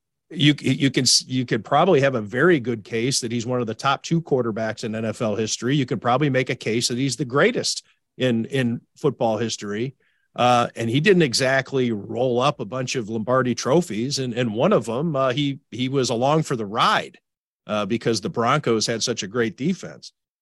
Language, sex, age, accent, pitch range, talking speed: English, male, 40-59, American, 115-140 Hz, 205 wpm